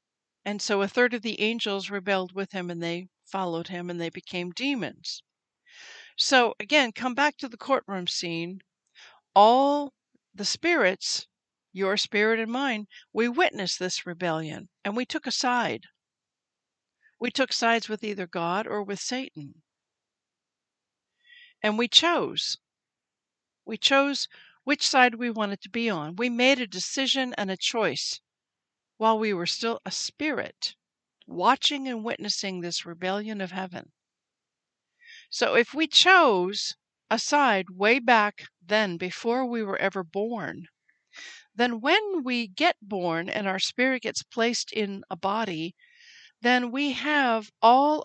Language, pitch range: English, 190-255 Hz